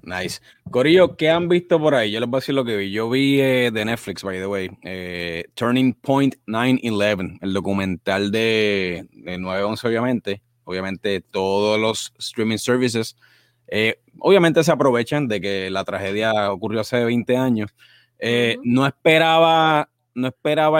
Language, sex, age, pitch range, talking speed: Spanish, male, 30-49, 105-135 Hz, 160 wpm